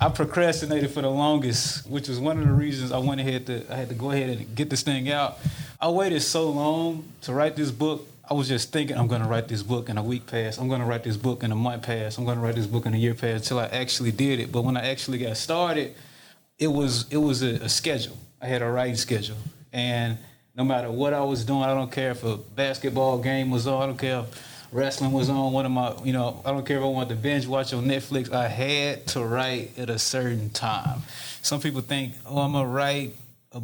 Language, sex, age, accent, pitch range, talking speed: English, male, 20-39, American, 120-140 Hz, 255 wpm